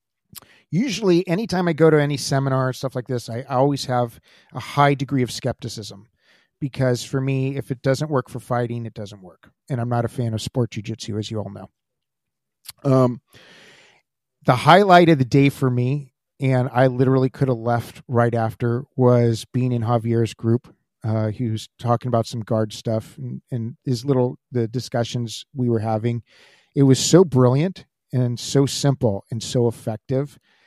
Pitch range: 120-145 Hz